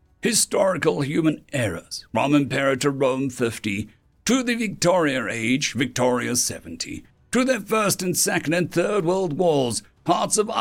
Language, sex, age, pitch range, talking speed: English, male, 60-79, 130-185 Hz, 135 wpm